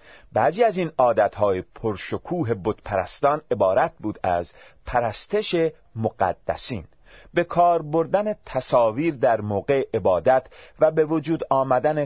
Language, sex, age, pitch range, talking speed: Persian, male, 40-59, 105-160 Hz, 110 wpm